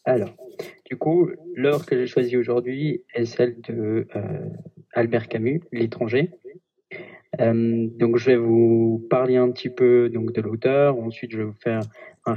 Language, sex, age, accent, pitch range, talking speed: French, male, 20-39, French, 115-125 Hz, 160 wpm